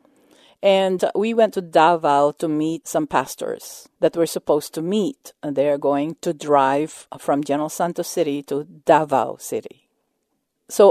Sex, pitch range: female, 165-230 Hz